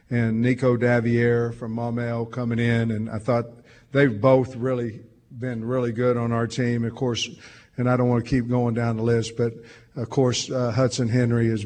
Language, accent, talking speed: English, American, 195 wpm